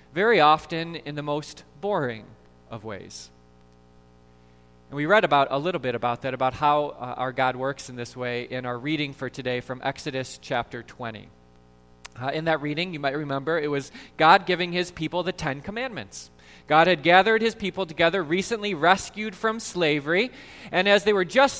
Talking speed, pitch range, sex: 185 wpm, 135-215 Hz, male